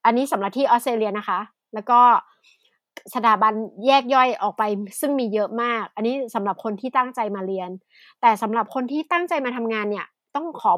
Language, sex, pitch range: Thai, female, 215-265 Hz